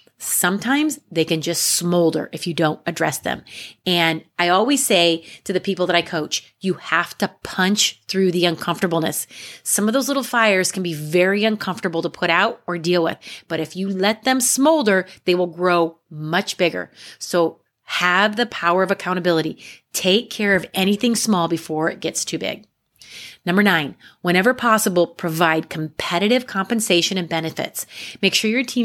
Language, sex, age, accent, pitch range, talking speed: English, female, 30-49, American, 165-210 Hz, 170 wpm